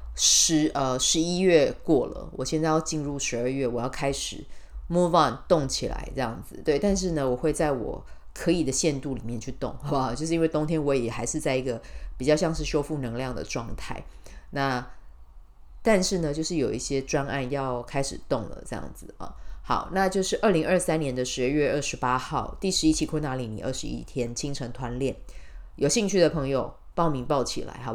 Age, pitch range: 20-39, 125-155 Hz